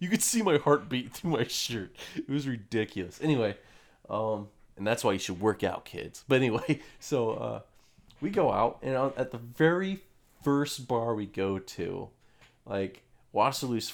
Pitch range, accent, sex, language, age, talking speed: 105-140 Hz, American, male, English, 30-49, 170 wpm